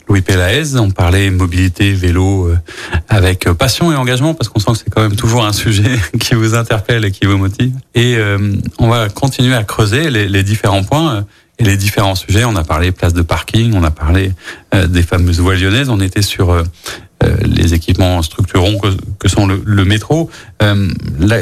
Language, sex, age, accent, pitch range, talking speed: French, male, 40-59, French, 90-115 Hz, 205 wpm